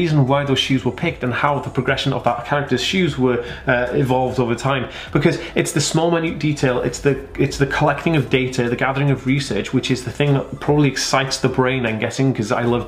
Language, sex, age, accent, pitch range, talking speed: English, male, 20-39, British, 115-145 Hz, 235 wpm